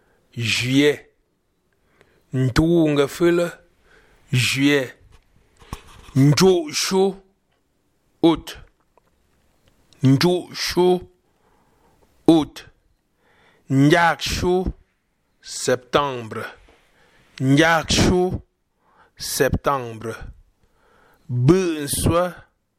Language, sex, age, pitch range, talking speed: French, male, 60-79, 120-155 Hz, 45 wpm